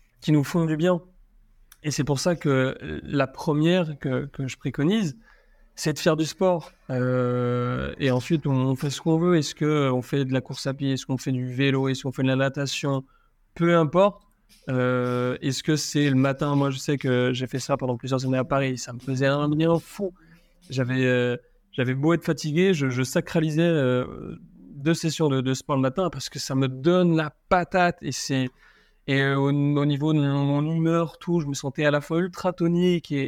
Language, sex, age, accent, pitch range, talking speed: French, male, 30-49, French, 130-160 Hz, 210 wpm